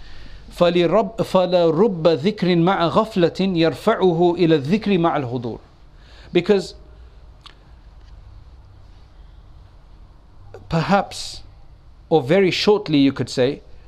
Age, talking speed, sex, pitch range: 50-69, 75 wpm, male, 120-175 Hz